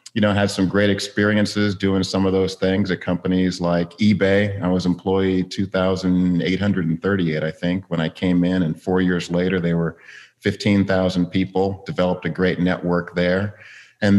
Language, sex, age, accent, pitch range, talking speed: English, male, 30-49, American, 85-100 Hz, 160 wpm